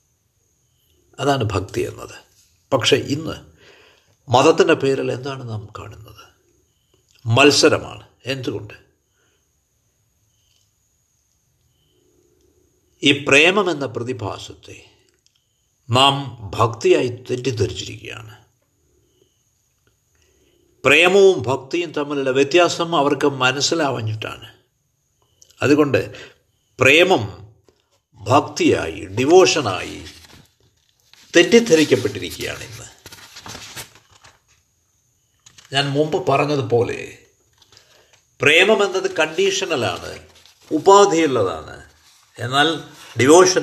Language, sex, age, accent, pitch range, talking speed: Malayalam, male, 60-79, native, 110-155 Hz, 55 wpm